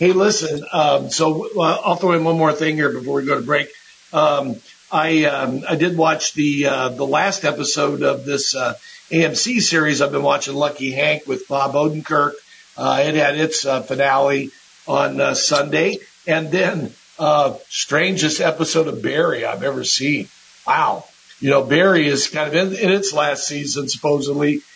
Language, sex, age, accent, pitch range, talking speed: English, male, 60-79, American, 140-165 Hz, 175 wpm